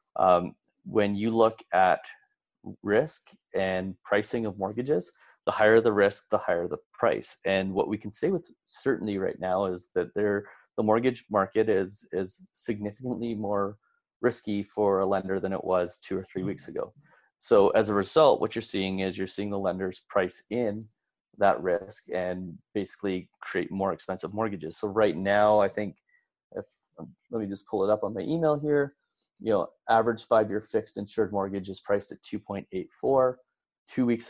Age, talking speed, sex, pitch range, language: 30-49, 175 wpm, male, 95-110 Hz, English